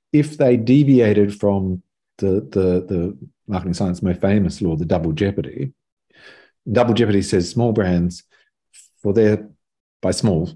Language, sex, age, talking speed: English, male, 40-59, 135 wpm